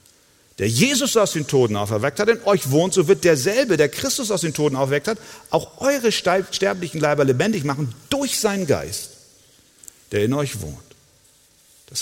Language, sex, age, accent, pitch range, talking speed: German, male, 50-69, German, 115-155 Hz, 170 wpm